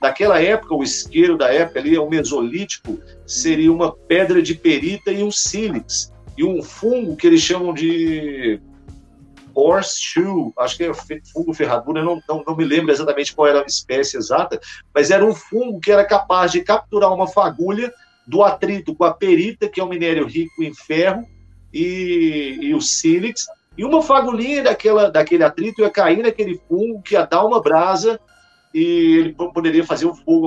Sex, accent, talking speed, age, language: male, Brazilian, 180 wpm, 50-69, Portuguese